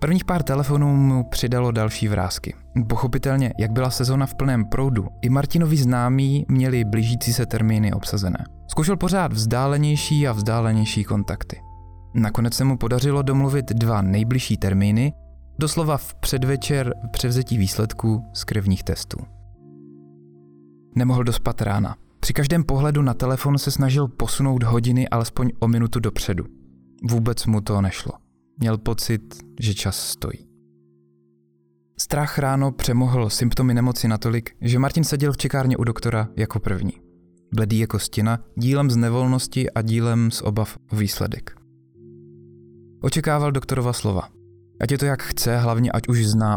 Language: Czech